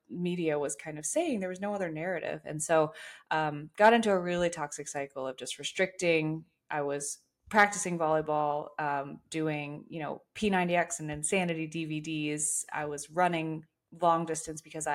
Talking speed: 160 wpm